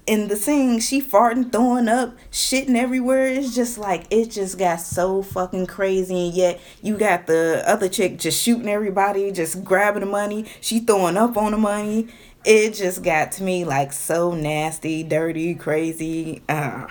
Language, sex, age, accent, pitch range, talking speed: English, female, 20-39, American, 160-225 Hz, 170 wpm